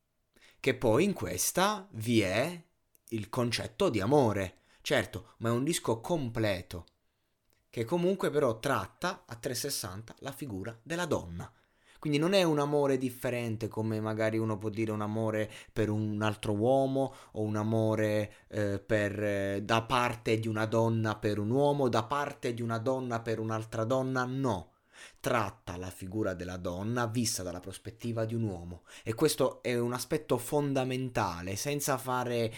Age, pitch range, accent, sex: 30-49, 105-125 Hz, native, male